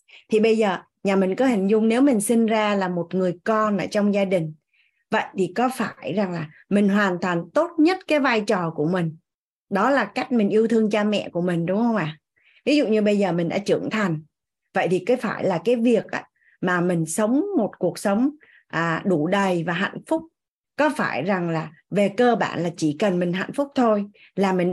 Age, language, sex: 20-39, Vietnamese, female